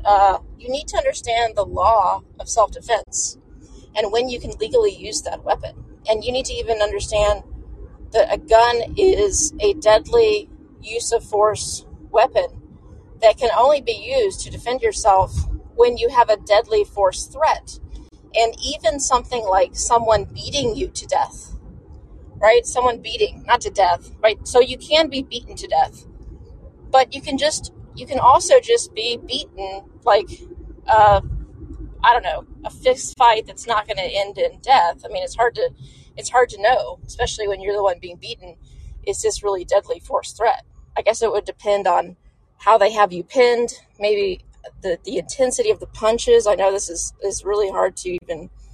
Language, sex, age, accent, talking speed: English, female, 30-49, American, 175 wpm